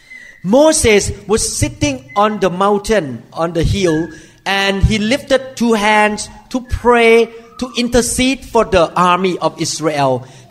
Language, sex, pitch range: Thai, male, 180-235 Hz